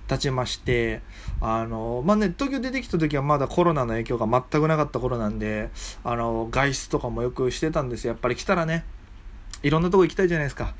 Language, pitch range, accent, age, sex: Japanese, 115-175 Hz, native, 20-39, male